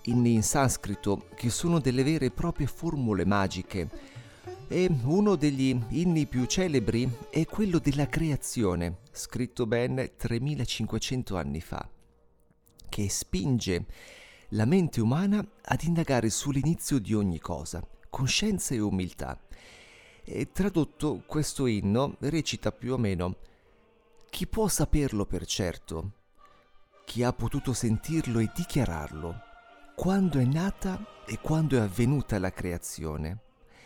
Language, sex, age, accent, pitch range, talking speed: Italian, male, 30-49, native, 100-145 Hz, 120 wpm